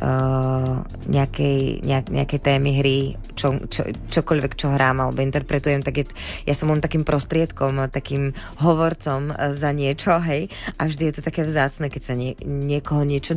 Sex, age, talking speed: female, 20-39, 160 wpm